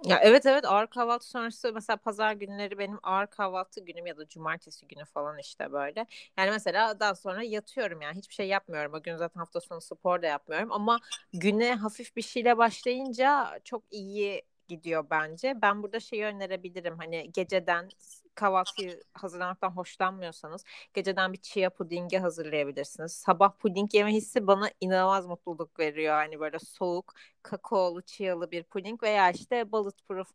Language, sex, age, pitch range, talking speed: Turkish, female, 30-49, 175-220 Hz, 155 wpm